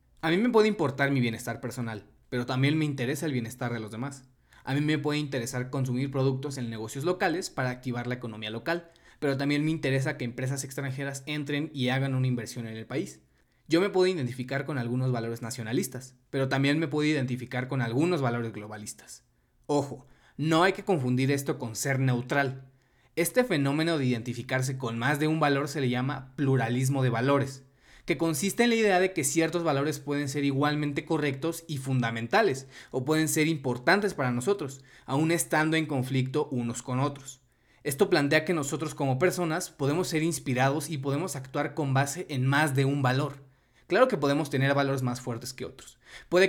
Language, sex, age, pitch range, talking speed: Spanish, male, 20-39, 125-155 Hz, 185 wpm